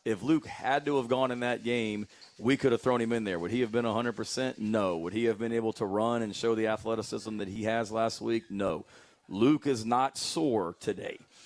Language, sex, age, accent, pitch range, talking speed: English, male, 40-59, American, 105-120 Hz, 230 wpm